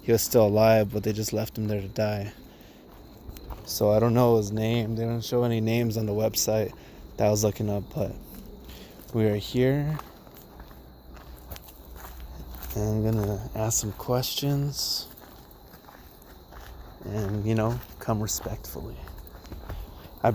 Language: English